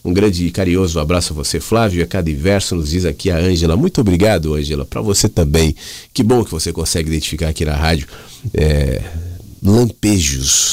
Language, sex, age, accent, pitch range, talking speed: Portuguese, male, 40-59, Brazilian, 80-125 Hz, 190 wpm